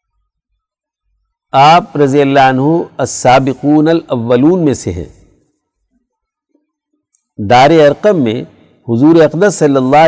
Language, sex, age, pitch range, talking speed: Urdu, male, 60-79, 125-170 Hz, 95 wpm